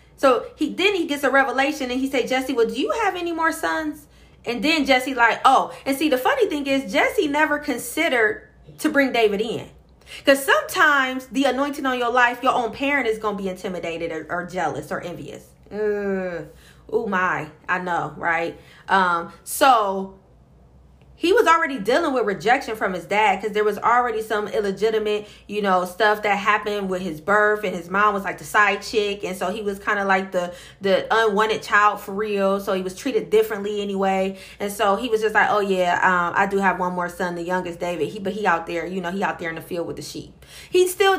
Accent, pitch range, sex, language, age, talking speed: American, 190-270 Hz, female, English, 30-49, 215 wpm